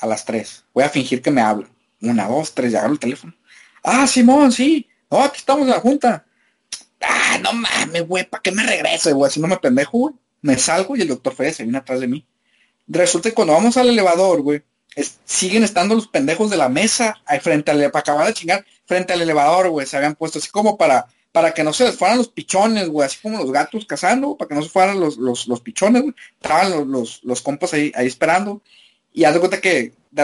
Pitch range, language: 160-235 Hz, Spanish